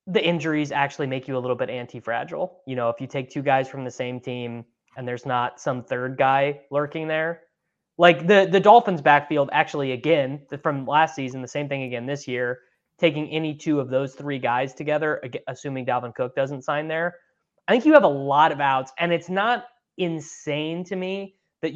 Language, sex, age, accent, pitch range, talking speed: English, male, 20-39, American, 130-170 Hz, 200 wpm